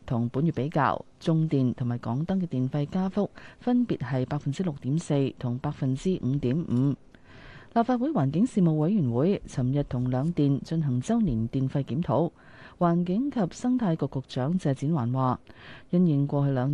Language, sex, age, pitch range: Chinese, female, 30-49, 135-175 Hz